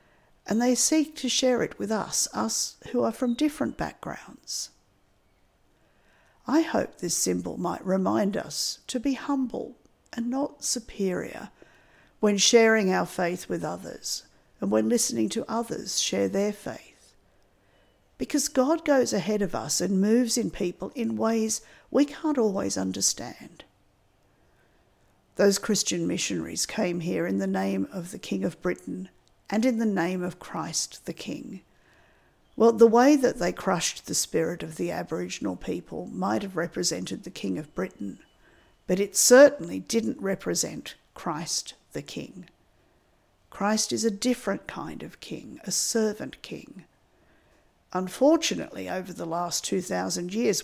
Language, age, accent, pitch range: English, 50-69, Australian, 175-245 Hz